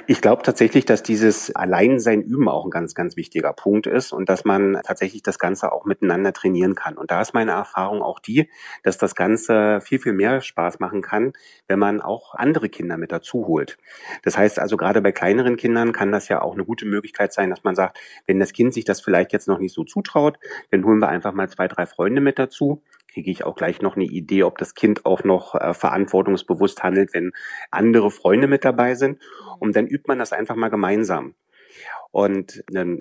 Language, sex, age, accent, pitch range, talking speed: German, male, 30-49, German, 95-115 Hz, 215 wpm